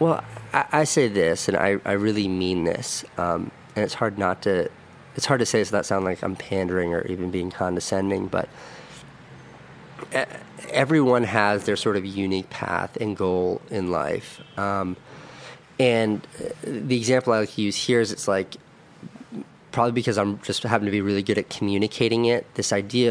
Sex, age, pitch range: male, 30-49, 95-110 Hz